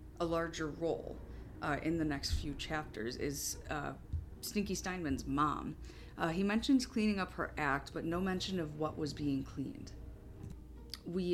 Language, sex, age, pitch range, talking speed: English, female, 40-59, 135-185 Hz, 160 wpm